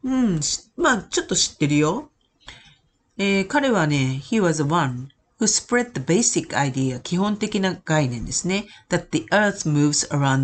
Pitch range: 150-230 Hz